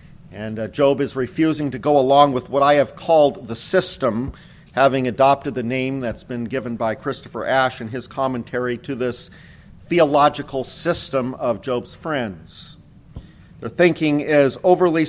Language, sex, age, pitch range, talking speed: English, male, 50-69, 125-150 Hz, 150 wpm